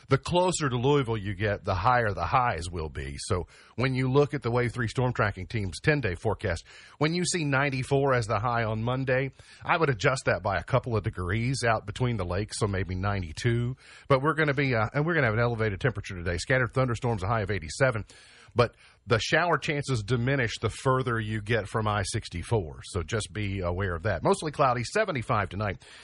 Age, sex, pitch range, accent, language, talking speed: 40-59, male, 105-130 Hz, American, English, 230 wpm